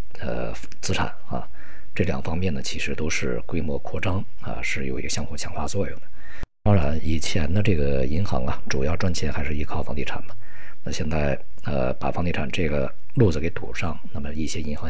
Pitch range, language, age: 70-95 Hz, Chinese, 50-69